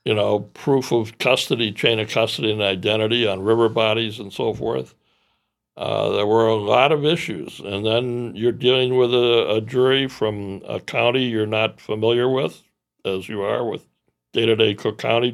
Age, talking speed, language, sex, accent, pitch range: 60-79, 175 wpm, English, male, American, 95-115 Hz